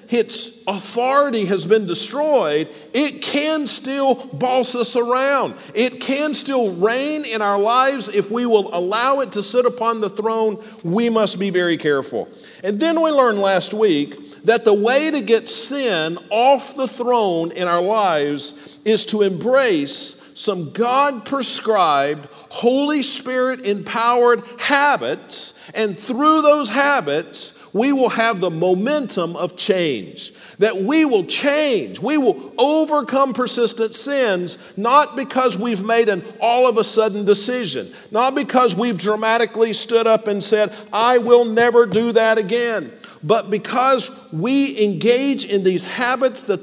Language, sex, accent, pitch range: English, male, American, 205-255 Hz